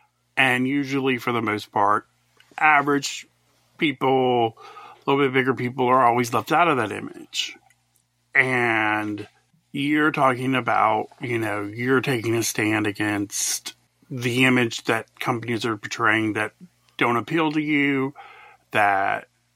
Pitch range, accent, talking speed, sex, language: 110-145 Hz, American, 130 wpm, male, English